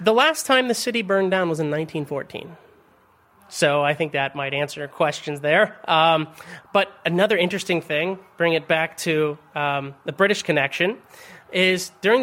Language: English